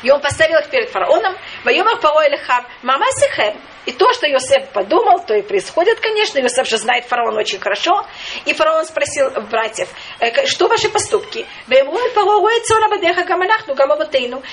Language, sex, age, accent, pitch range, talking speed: Russian, female, 40-59, native, 280-415 Hz, 130 wpm